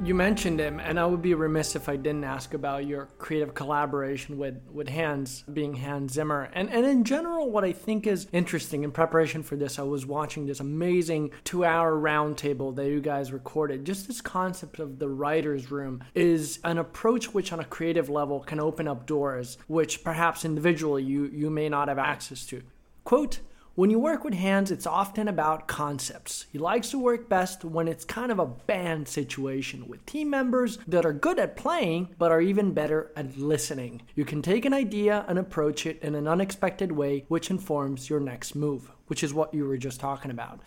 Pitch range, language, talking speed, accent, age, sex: 145-180 Hz, English, 200 wpm, American, 20-39, male